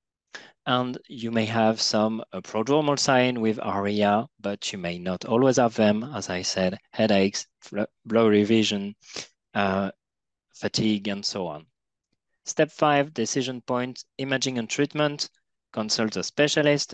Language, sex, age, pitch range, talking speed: English, male, 30-49, 105-130 Hz, 140 wpm